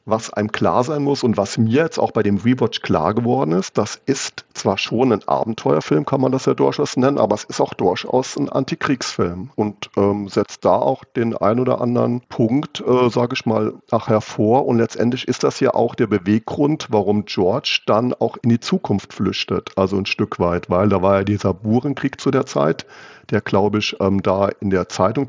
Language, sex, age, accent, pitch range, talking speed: German, male, 50-69, German, 100-130 Hz, 210 wpm